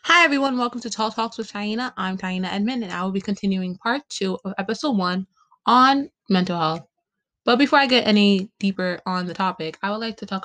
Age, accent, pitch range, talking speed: 20-39, American, 185-225 Hz, 220 wpm